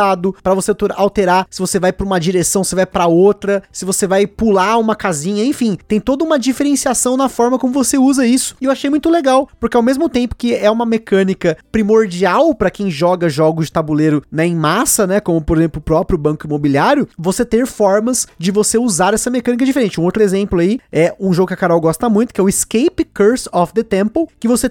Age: 20-39